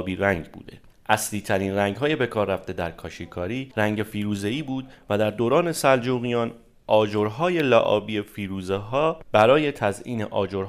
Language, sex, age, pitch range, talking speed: Persian, male, 30-49, 95-135 Hz, 155 wpm